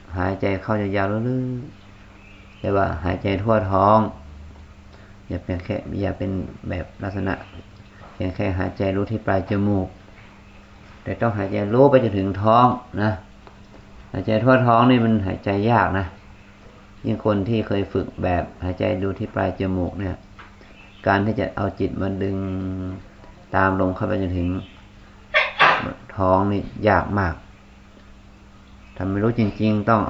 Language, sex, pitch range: Thai, male, 95-110 Hz